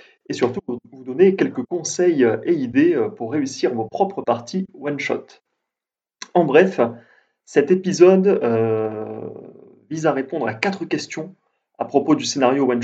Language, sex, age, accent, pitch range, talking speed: French, male, 30-49, French, 120-190 Hz, 150 wpm